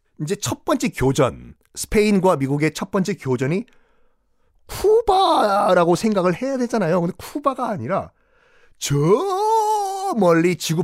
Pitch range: 155-235 Hz